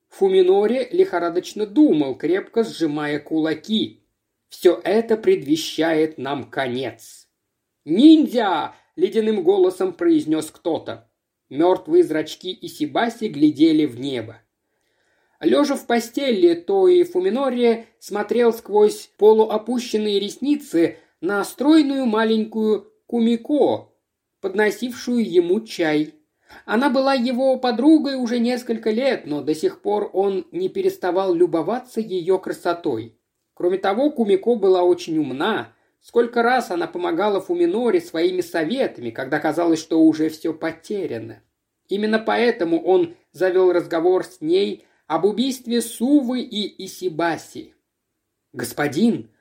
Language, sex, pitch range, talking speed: Russian, male, 180-300 Hz, 110 wpm